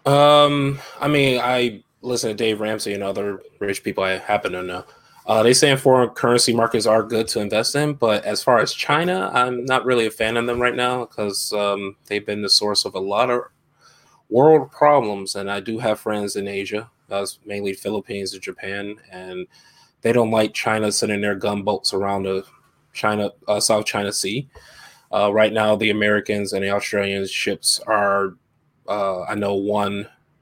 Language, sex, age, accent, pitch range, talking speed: English, male, 20-39, American, 100-125 Hz, 185 wpm